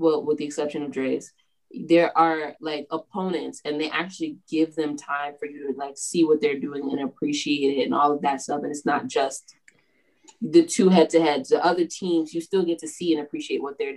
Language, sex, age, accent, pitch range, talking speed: English, female, 20-39, American, 150-215 Hz, 220 wpm